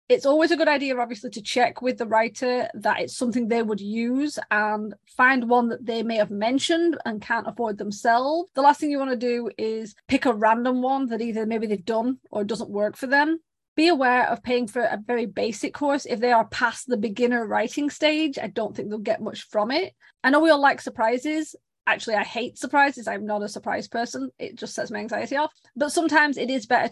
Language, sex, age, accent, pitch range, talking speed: English, female, 30-49, British, 225-285 Hz, 225 wpm